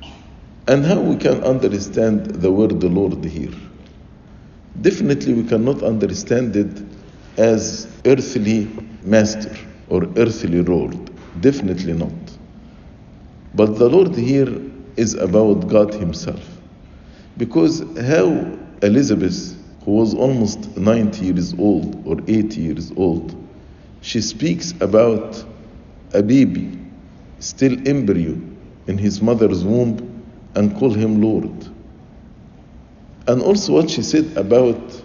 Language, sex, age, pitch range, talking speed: English, male, 50-69, 105-130 Hz, 110 wpm